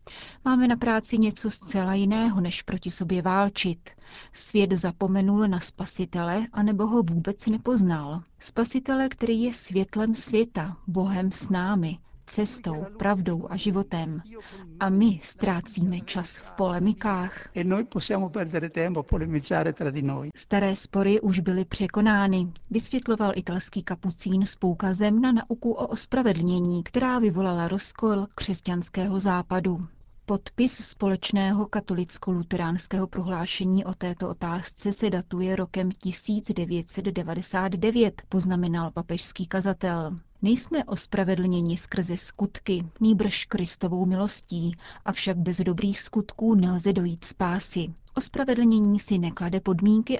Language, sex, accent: Czech, female, native